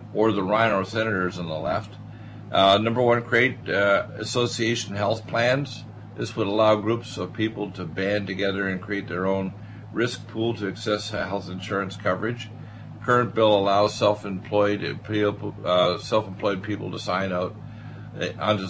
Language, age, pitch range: English, 50-69, 100-115 Hz